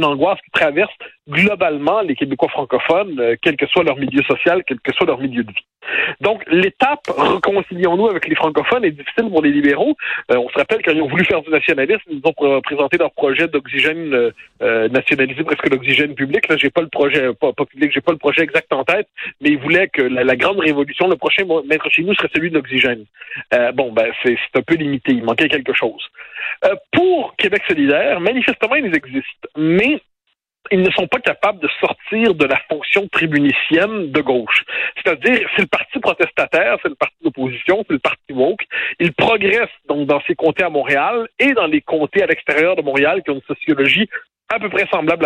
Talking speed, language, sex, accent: 205 wpm, French, male, French